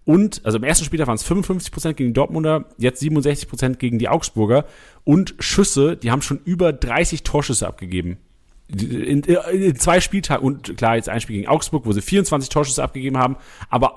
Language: German